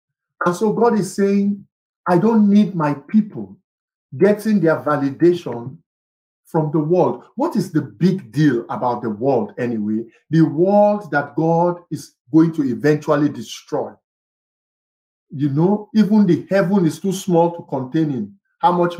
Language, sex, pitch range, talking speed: English, male, 150-210 Hz, 150 wpm